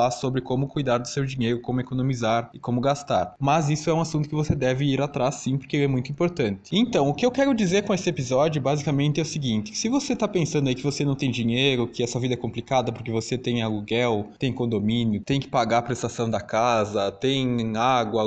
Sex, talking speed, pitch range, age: male, 225 wpm, 120-155 Hz, 20-39